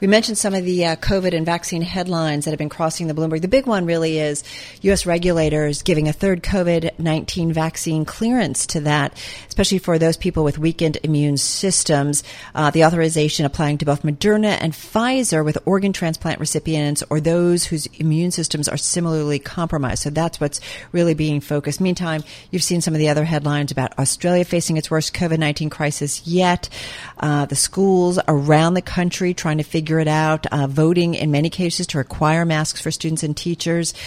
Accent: American